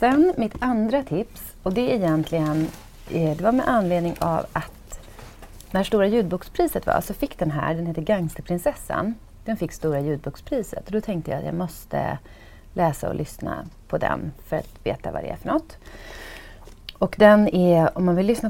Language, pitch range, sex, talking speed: English, 140-195 Hz, female, 185 wpm